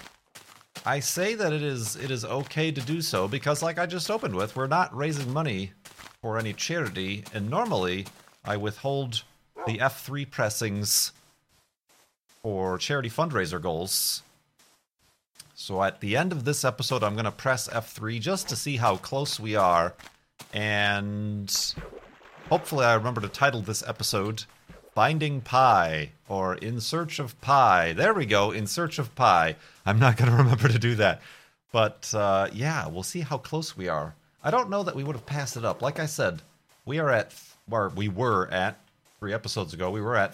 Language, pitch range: English, 105-145 Hz